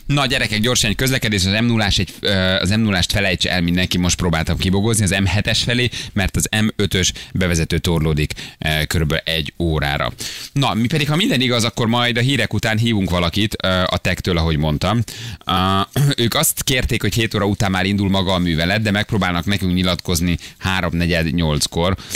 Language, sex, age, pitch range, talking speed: Hungarian, male, 30-49, 85-110 Hz, 160 wpm